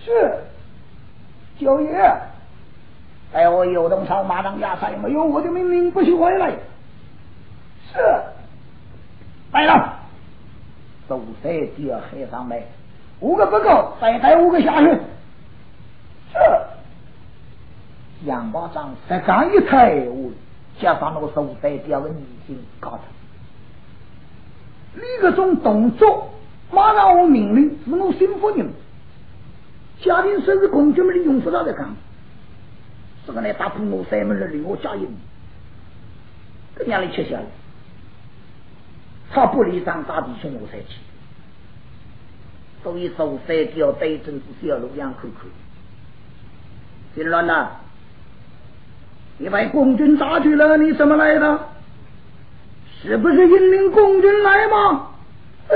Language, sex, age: Chinese, male, 50-69